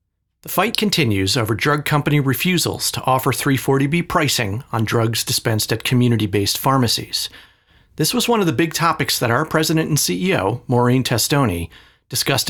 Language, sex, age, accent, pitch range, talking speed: English, male, 40-59, American, 110-150 Hz, 155 wpm